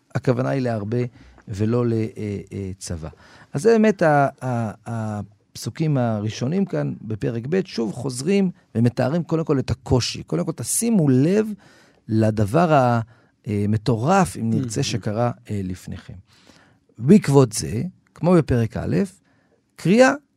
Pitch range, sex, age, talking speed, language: 115-165 Hz, male, 40-59, 110 wpm, Hebrew